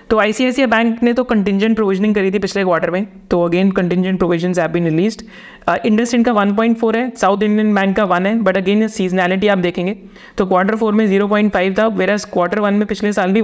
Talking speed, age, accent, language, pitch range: 230 wpm, 30-49, native, Hindi, 180-215 Hz